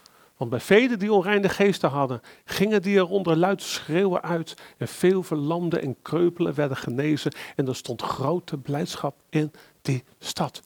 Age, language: 40-59, Dutch